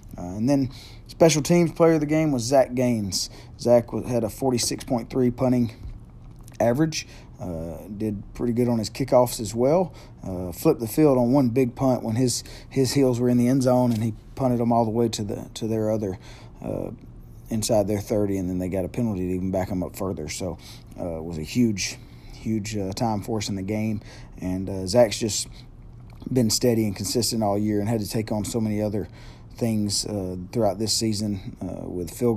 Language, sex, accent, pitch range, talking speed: English, male, American, 100-125 Hz, 205 wpm